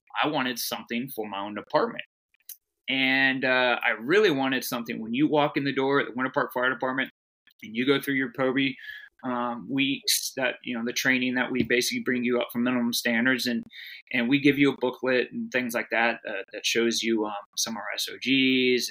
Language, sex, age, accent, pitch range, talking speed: English, male, 20-39, American, 120-135 Hz, 215 wpm